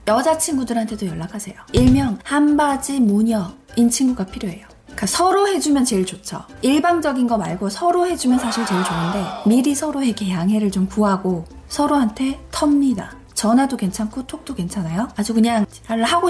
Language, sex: Korean, female